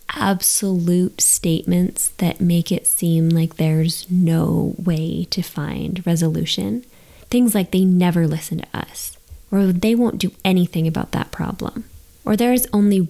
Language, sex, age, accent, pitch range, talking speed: English, female, 20-39, American, 170-200 Hz, 140 wpm